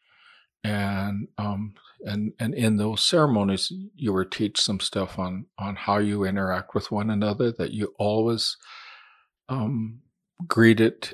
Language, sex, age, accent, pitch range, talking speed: English, male, 50-69, American, 100-115 Hz, 135 wpm